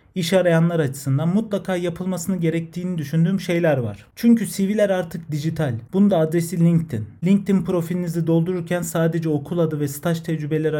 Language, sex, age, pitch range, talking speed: Turkish, male, 40-59, 150-180 Hz, 140 wpm